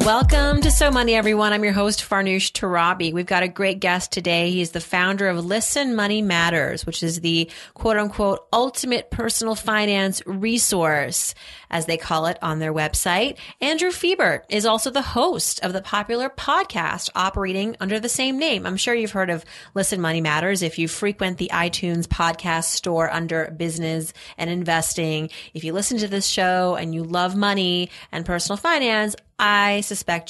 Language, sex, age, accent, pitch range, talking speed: English, female, 30-49, American, 170-215 Hz, 170 wpm